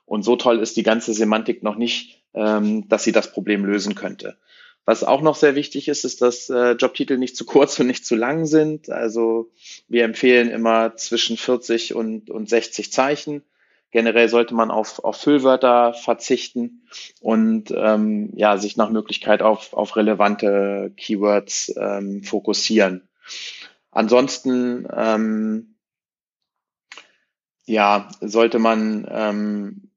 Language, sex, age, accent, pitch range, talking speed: German, male, 30-49, German, 110-120 Hz, 140 wpm